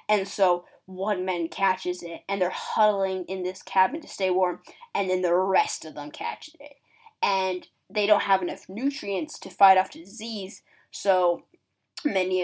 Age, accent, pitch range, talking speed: 10-29, American, 190-225 Hz, 175 wpm